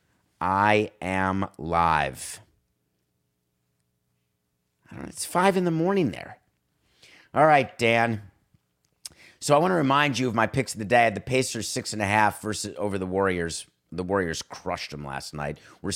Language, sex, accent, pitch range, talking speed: English, male, American, 90-130 Hz, 175 wpm